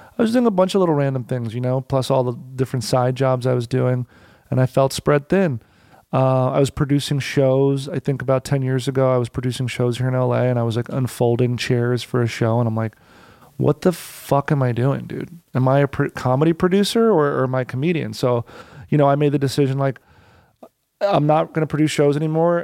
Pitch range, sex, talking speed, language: 125-150 Hz, male, 235 wpm, English